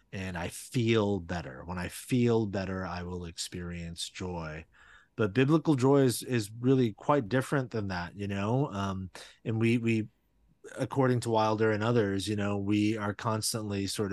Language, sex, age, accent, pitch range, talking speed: English, male, 30-49, American, 95-115 Hz, 165 wpm